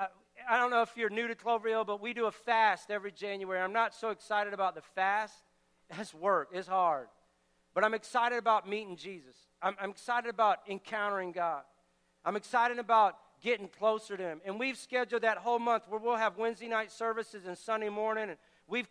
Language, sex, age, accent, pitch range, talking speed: English, male, 50-69, American, 210-245 Hz, 200 wpm